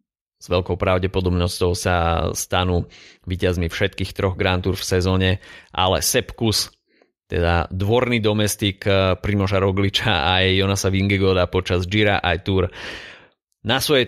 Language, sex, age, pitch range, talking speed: Slovak, male, 30-49, 90-110 Hz, 125 wpm